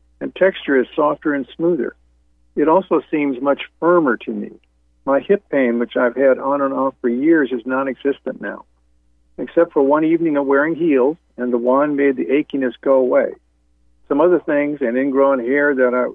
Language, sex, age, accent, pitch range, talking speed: English, male, 60-79, American, 120-150 Hz, 185 wpm